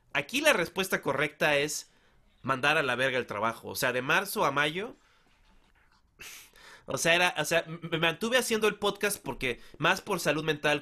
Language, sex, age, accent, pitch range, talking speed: Spanish, male, 30-49, Mexican, 125-165 Hz, 175 wpm